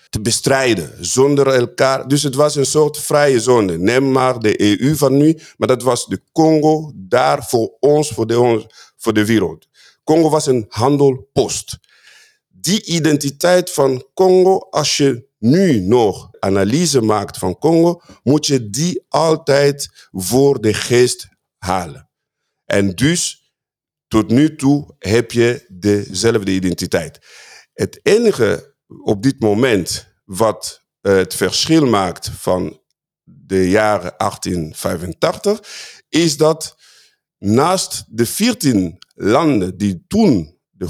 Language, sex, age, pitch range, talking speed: Dutch, male, 50-69, 110-155 Hz, 120 wpm